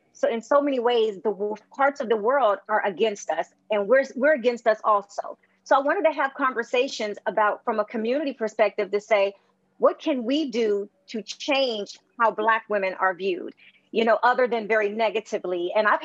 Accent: American